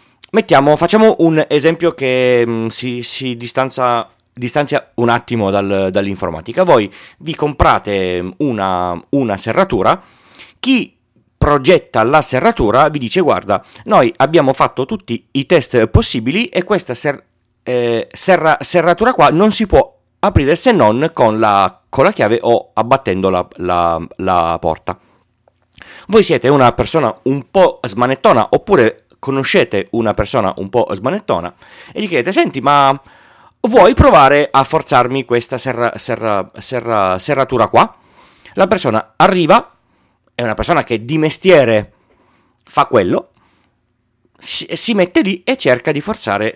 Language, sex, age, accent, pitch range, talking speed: Italian, male, 40-59, native, 115-165 Hz, 135 wpm